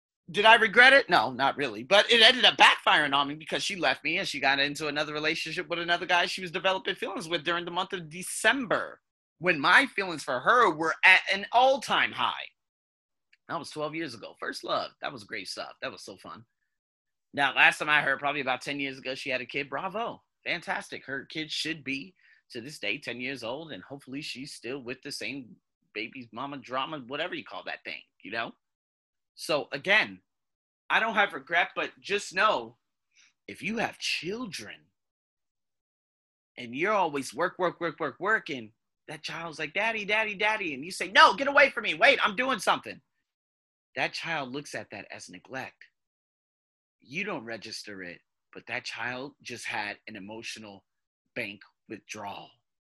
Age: 30-49